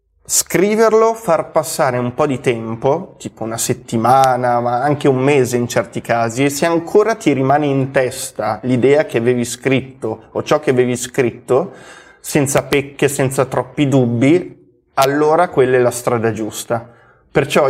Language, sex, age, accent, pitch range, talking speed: Italian, male, 20-39, native, 120-140 Hz, 155 wpm